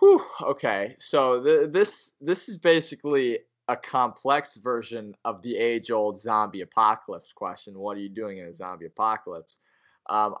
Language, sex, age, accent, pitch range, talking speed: English, male, 20-39, American, 105-125 Hz, 150 wpm